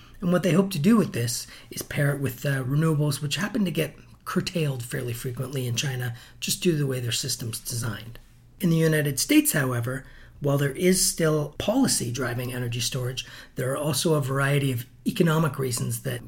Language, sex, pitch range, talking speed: English, male, 130-160 Hz, 195 wpm